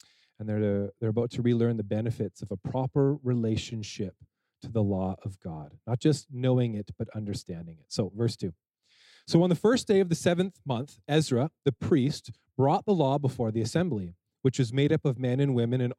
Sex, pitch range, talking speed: male, 110-150 Hz, 205 wpm